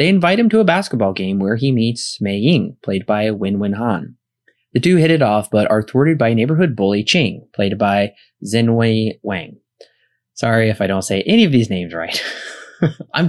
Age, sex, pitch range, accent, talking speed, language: 20-39, male, 105-135 Hz, American, 205 wpm, English